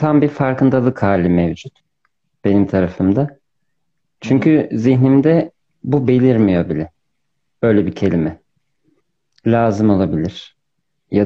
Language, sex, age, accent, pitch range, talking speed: Turkish, male, 40-59, native, 105-145 Hz, 95 wpm